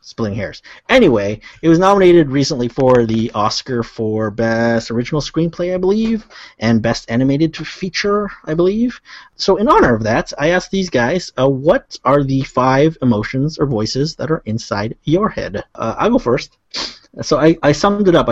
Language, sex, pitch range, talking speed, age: English, male, 110-145 Hz, 175 wpm, 30-49